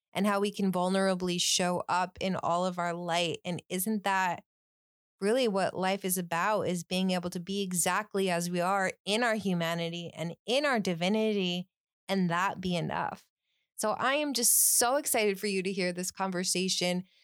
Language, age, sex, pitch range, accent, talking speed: English, 20-39, female, 180-210 Hz, American, 180 wpm